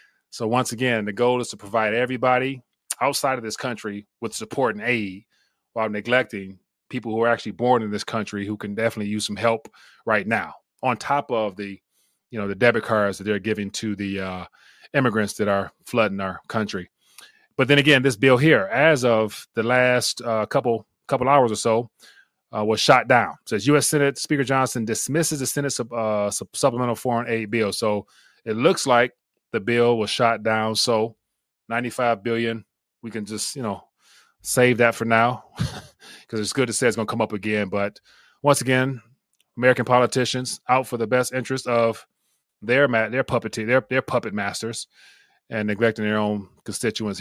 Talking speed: 185 wpm